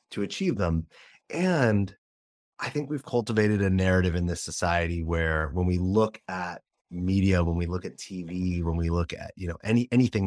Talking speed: 185 wpm